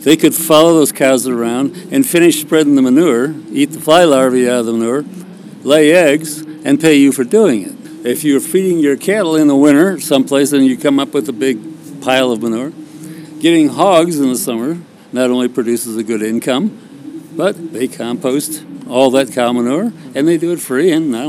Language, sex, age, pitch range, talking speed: English, male, 50-69, 135-185 Hz, 200 wpm